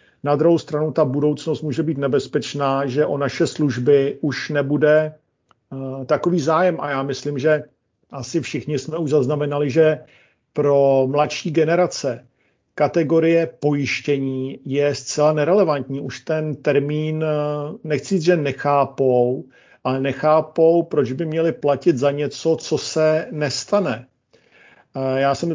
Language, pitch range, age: Slovak, 135-155 Hz, 50-69